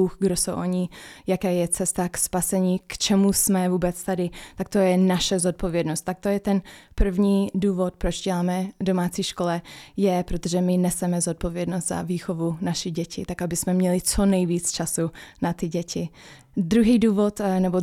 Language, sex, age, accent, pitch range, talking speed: Czech, female, 20-39, native, 180-200 Hz, 170 wpm